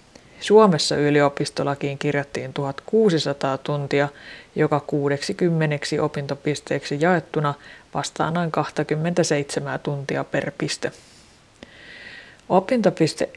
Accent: native